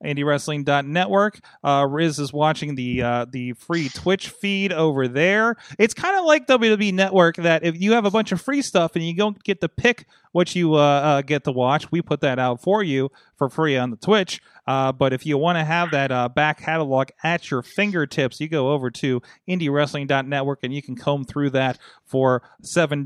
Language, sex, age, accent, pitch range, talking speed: English, male, 30-49, American, 130-175 Hz, 205 wpm